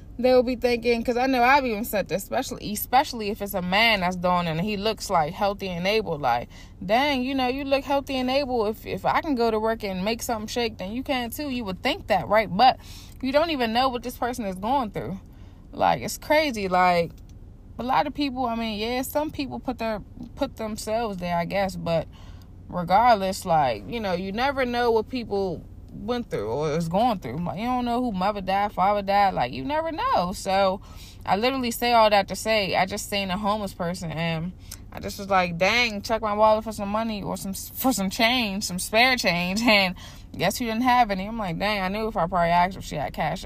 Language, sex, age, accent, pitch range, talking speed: English, female, 20-39, American, 180-240 Hz, 230 wpm